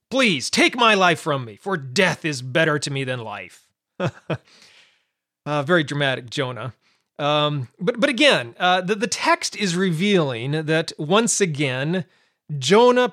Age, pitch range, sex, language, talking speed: 40-59, 140-185 Hz, male, English, 145 wpm